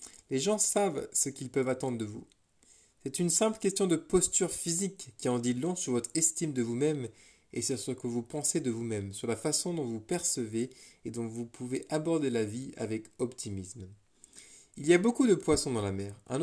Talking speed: 210 wpm